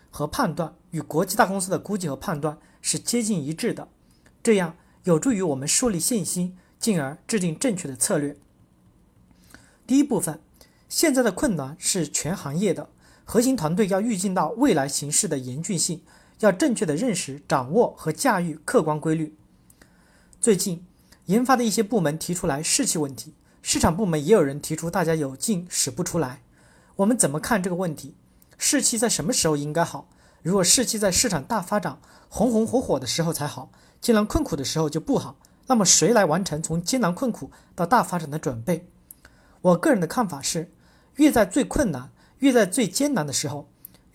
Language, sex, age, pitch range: Chinese, male, 40-59, 150-220 Hz